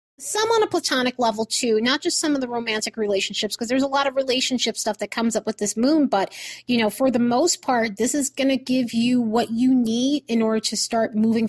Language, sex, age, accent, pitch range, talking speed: English, female, 30-49, American, 215-275 Hz, 245 wpm